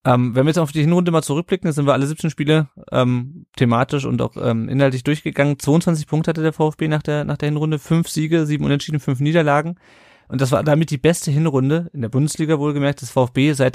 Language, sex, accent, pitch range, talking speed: German, male, German, 120-145 Hz, 225 wpm